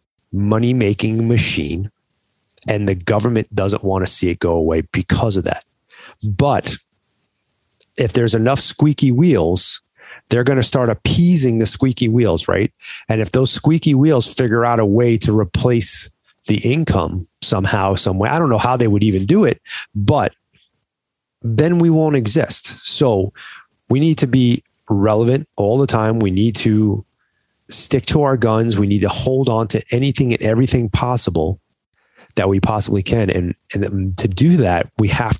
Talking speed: 165 wpm